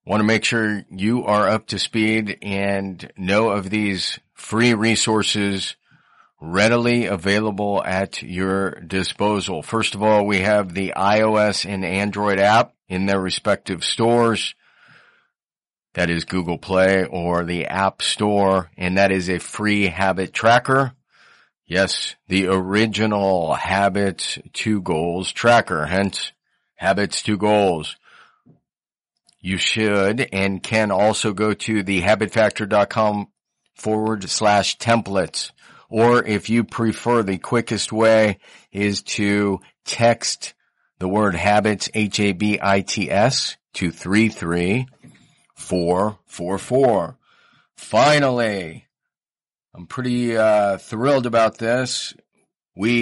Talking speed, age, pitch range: 110 wpm, 40-59, 95-110 Hz